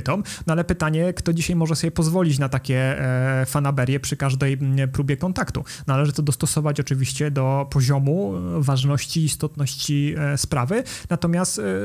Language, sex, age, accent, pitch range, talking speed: Polish, male, 30-49, native, 130-155 Hz, 125 wpm